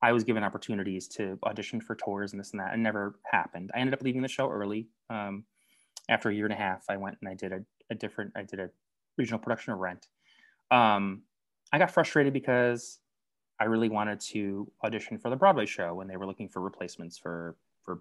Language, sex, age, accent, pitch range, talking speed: English, male, 20-39, American, 95-115 Hz, 220 wpm